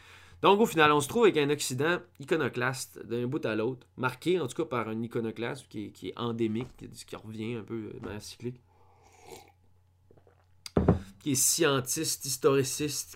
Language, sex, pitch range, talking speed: French, male, 95-130 Hz, 170 wpm